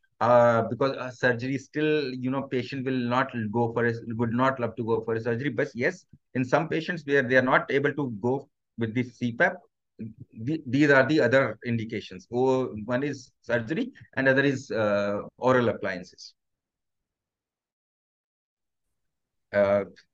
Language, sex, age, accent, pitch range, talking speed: English, male, 50-69, Indian, 115-150 Hz, 160 wpm